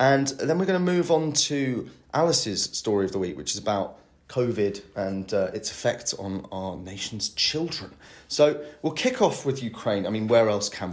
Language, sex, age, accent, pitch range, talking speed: English, male, 30-49, British, 95-120 Hz, 200 wpm